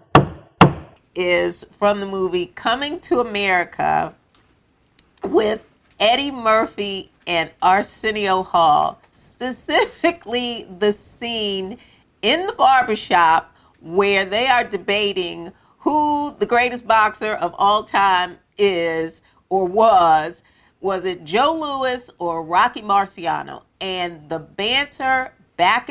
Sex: female